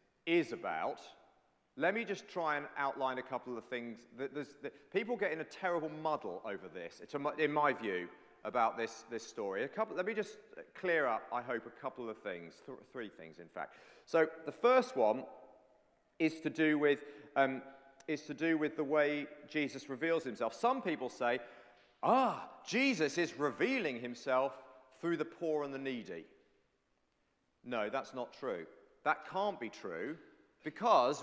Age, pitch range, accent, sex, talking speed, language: 40-59, 140-210 Hz, British, male, 170 wpm, English